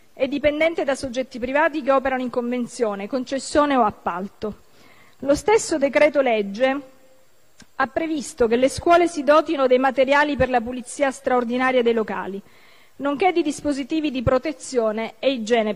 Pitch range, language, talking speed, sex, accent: 235-295 Hz, Italian, 145 wpm, female, native